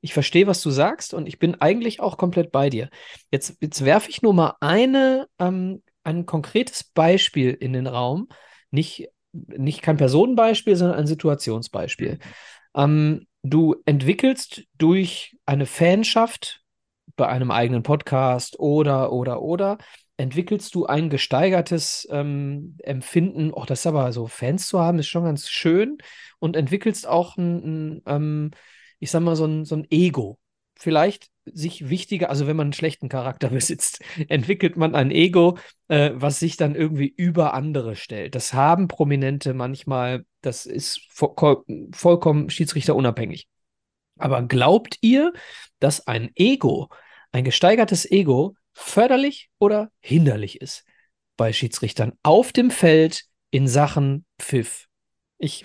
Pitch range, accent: 140-180 Hz, German